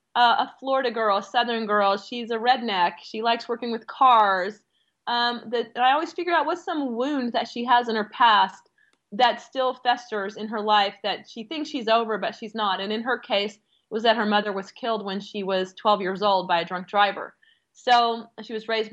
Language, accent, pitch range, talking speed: English, American, 210-250 Hz, 215 wpm